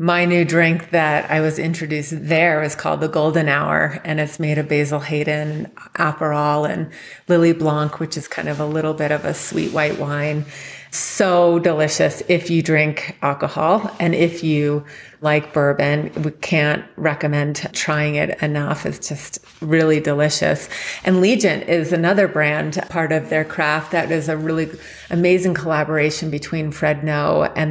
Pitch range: 150-175 Hz